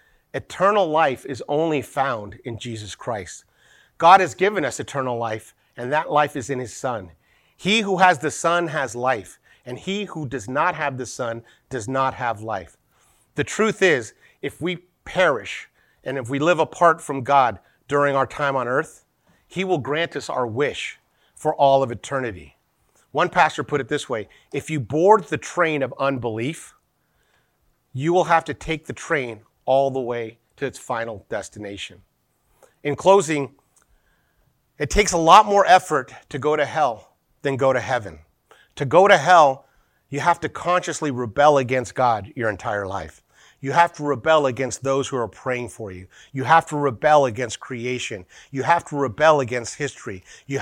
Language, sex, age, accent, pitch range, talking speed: English, male, 40-59, American, 120-155 Hz, 175 wpm